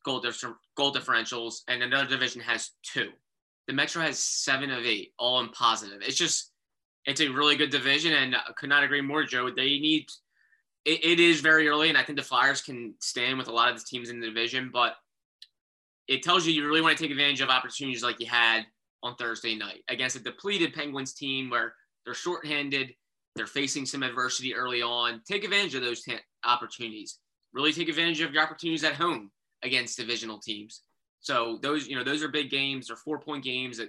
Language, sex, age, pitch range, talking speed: English, male, 20-39, 120-150 Hz, 210 wpm